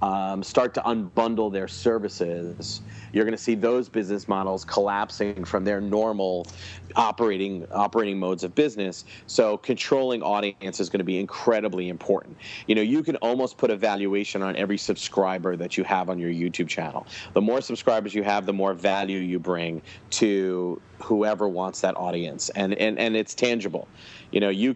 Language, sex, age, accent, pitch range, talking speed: English, male, 40-59, American, 95-110 Hz, 175 wpm